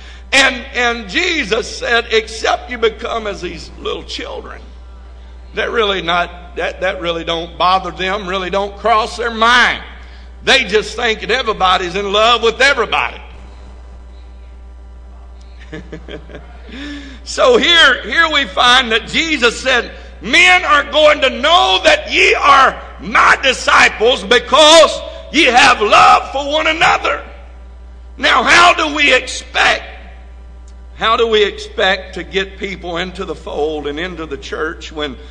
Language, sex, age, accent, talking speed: English, male, 60-79, American, 135 wpm